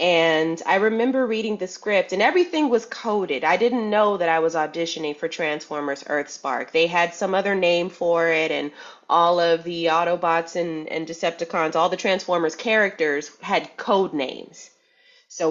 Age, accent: 30-49, American